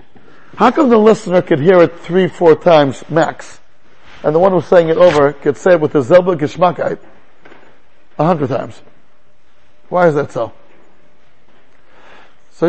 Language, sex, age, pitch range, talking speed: English, male, 60-79, 165-220 Hz, 155 wpm